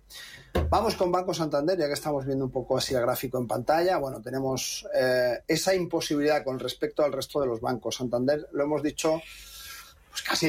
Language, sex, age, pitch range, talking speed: Spanish, male, 30-49, 130-155 Hz, 185 wpm